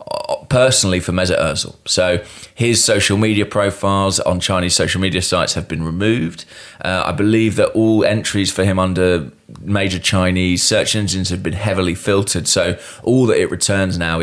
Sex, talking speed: male, 170 wpm